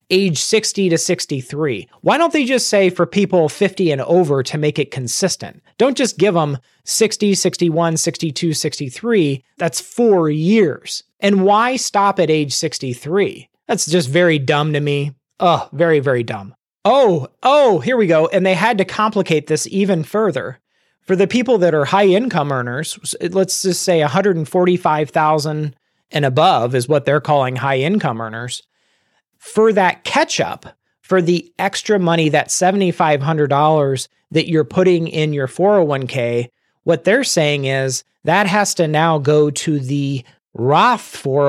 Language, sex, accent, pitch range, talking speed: English, male, American, 145-195 Hz, 155 wpm